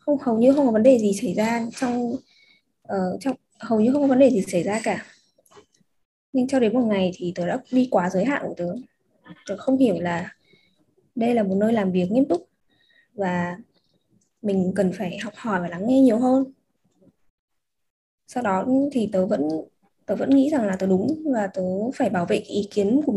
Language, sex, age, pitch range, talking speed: Vietnamese, female, 20-39, 205-270 Hz, 205 wpm